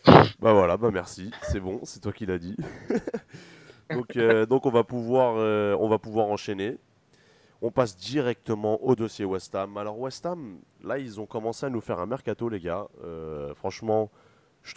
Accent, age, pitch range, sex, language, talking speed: French, 30-49, 90-120 Hz, male, French, 190 wpm